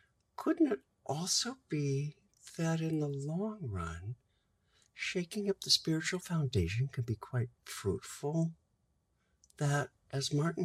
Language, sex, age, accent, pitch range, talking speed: German, male, 60-79, American, 120-170 Hz, 120 wpm